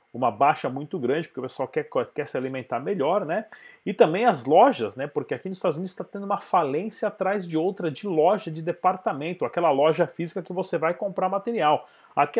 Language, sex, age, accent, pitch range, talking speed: Portuguese, male, 30-49, Brazilian, 160-210 Hz, 210 wpm